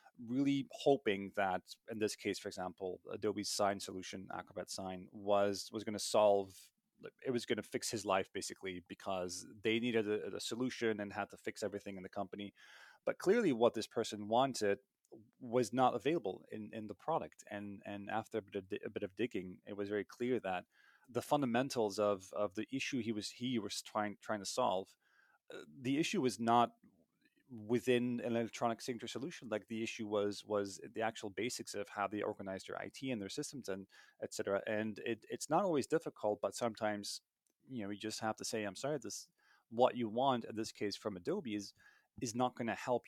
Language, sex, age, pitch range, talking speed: English, male, 30-49, 100-120 Hz, 200 wpm